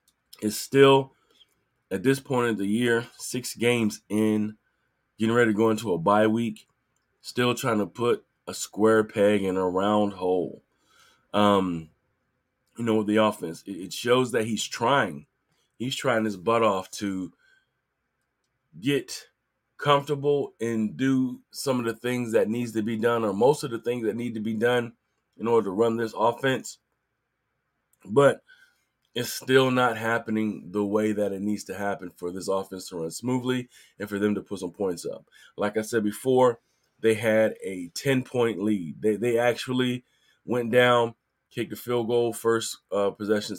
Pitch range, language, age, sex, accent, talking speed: 105-125 Hz, English, 30-49, male, American, 170 wpm